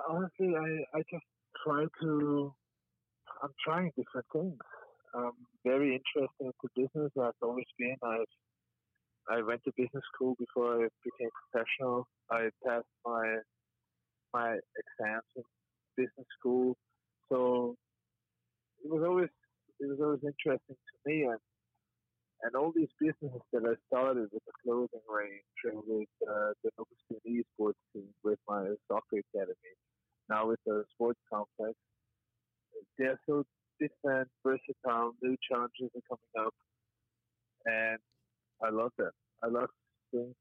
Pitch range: 115-135 Hz